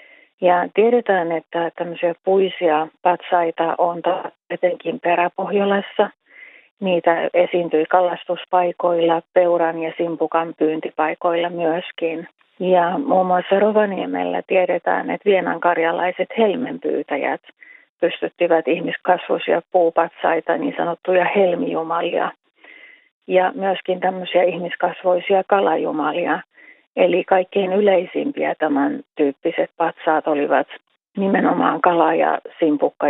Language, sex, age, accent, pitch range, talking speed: Finnish, female, 30-49, native, 165-190 Hz, 85 wpm